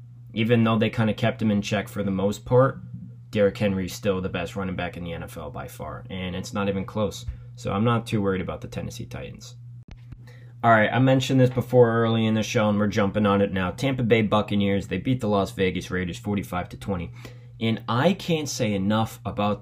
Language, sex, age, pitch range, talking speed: English, male, 20-39, 100-120 Hz, 225 wpm